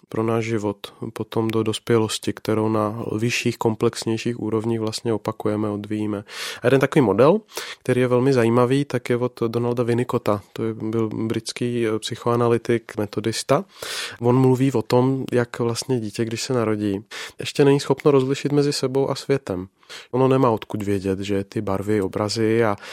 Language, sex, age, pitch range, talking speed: Czech, male, 30-49, 110-130 Hz, 155 wpm